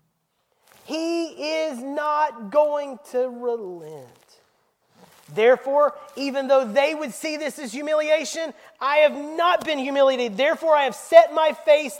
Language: English